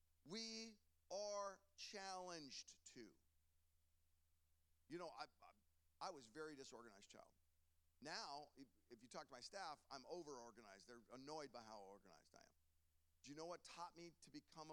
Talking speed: 165 wpm